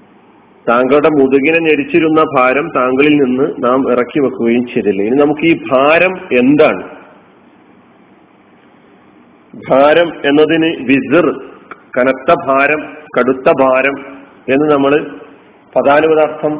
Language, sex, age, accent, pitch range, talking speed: Malayalam, male, 40-59, native, 130-155 Hz, 90 wpm